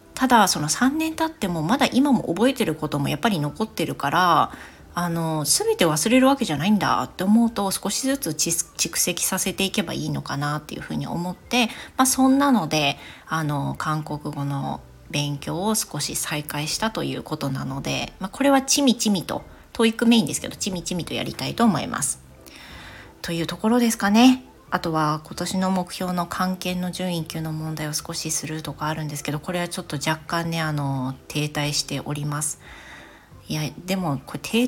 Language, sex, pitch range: Japanese, female, 150-210 Hz